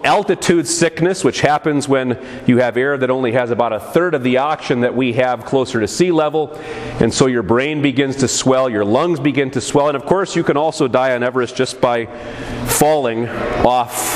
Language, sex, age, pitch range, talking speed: English, male, 40-59, 115-150 Hz, 210 wpm